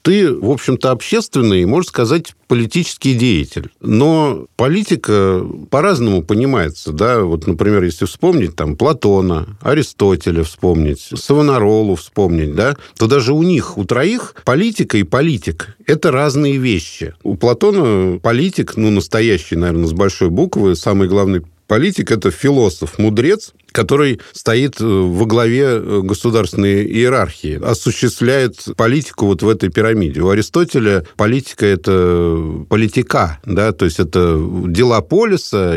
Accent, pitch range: native, 95-125 Hz